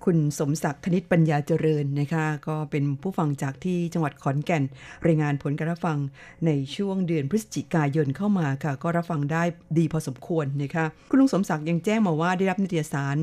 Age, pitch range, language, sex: 50-69, 150-180 Hz, Thai, female